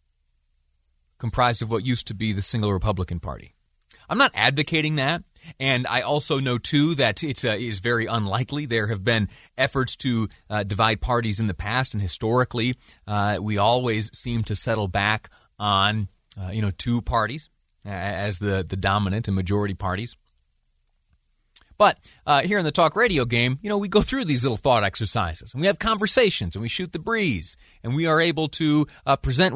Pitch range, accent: 100-145 Hz, American